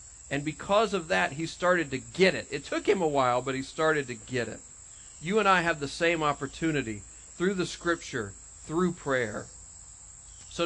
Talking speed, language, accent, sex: 185 wpm, English, American, male